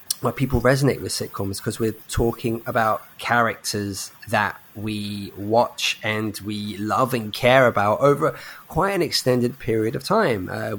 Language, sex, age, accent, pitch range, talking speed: English, male, 20-39, British, 110-145 Hz, 145 wpm